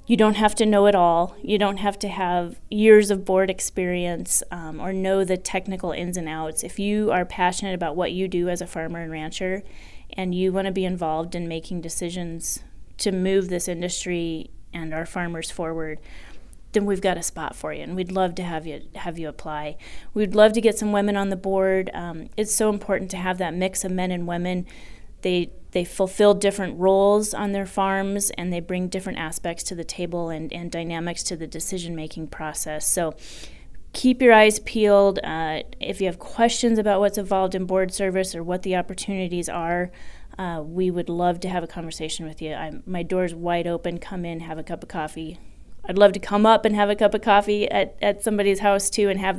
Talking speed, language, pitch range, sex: 215 wpm, English, 170-195 Hz, female